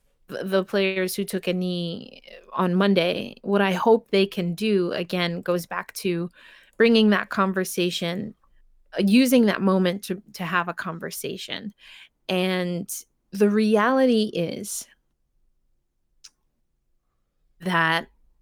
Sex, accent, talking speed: female, American, 110 wpm